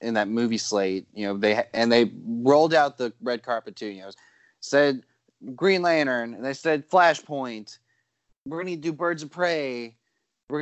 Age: 20-39